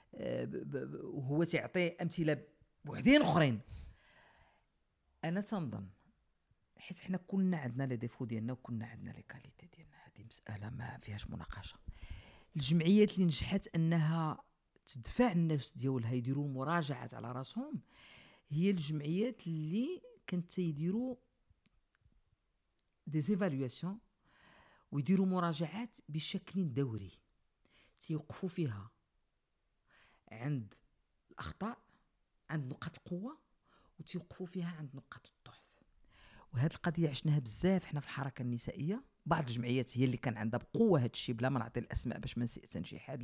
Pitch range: 125-175 Hz